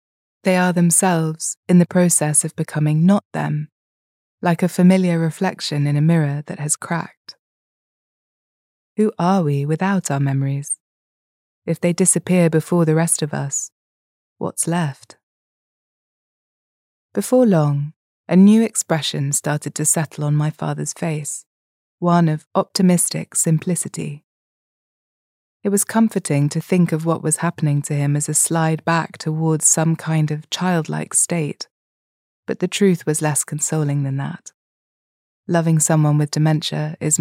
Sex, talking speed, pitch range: female, 140 wpm, 150-175 Hz